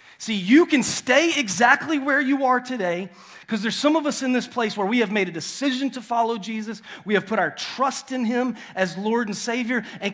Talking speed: 225 wpm